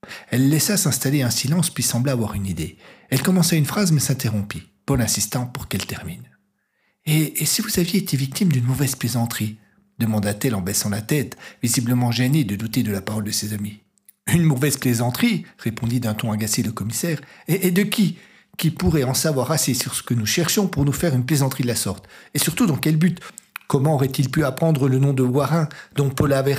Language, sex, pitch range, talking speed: French, male, 105-155 Hz, 210 wpm